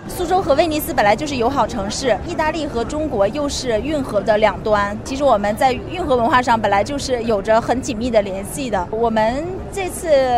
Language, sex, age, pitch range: Chinese, female, 30-49, 200-275 Hz